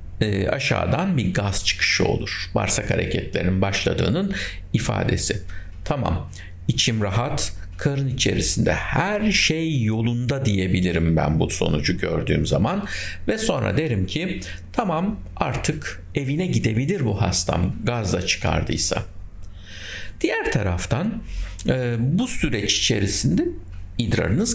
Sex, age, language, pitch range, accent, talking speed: male, 60-79, Turkish, 90-120 Hz, native, 105 wpm